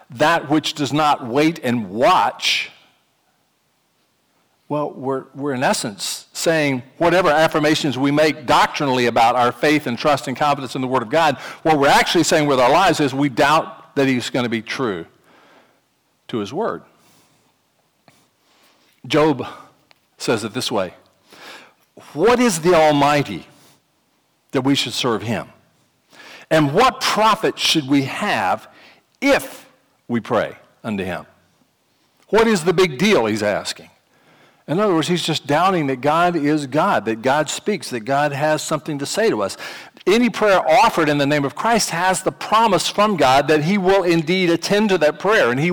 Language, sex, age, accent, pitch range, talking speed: English, male, 50-69, American, 140-185 Hz, 165 wpm